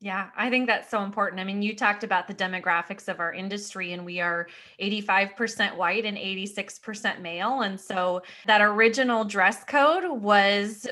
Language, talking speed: English, 170 wpm